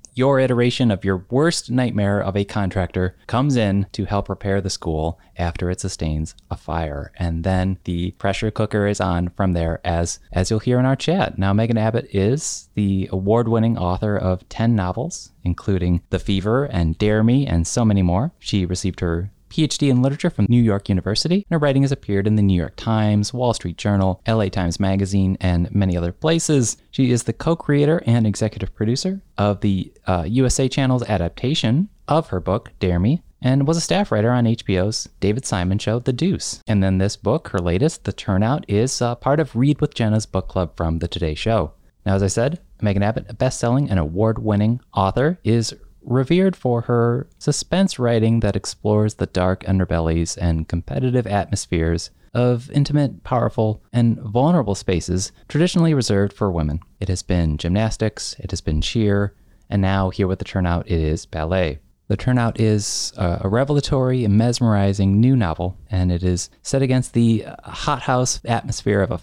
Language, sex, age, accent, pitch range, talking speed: English, male, 20-39, American, 95-125 Hz, 180 wpm